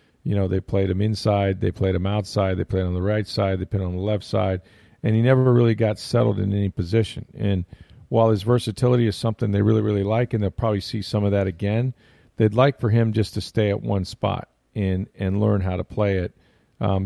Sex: male